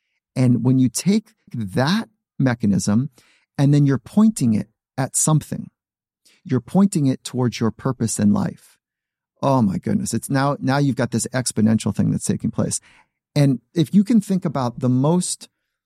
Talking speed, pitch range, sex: 165 wpm, 115-145 Hz, male